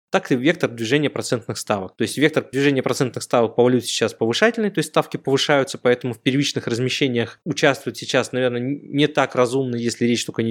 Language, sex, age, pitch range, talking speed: Russian, male, 20-39, 120-155 Hz, 195 wpm